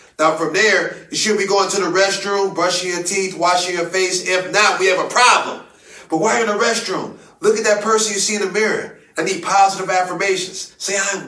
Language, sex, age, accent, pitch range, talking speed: English, male, 30-49, American, 165-195 Hz, 225 wpm